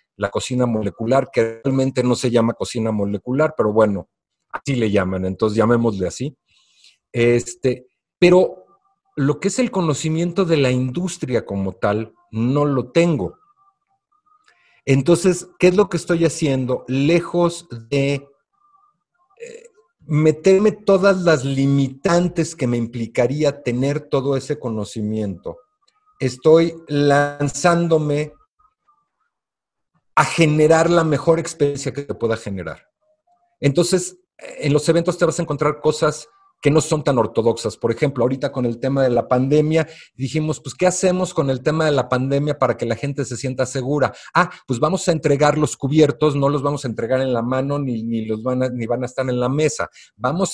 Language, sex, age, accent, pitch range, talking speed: Spanish, male, 50-69, Mexican, 125-170 Hz, 150 wpm